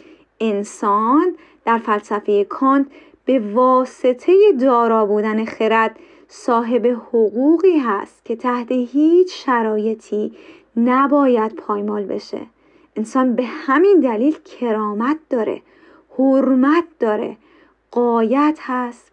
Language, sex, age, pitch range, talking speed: Persian, female, 30-49, 230-315 Hz, 90 wpm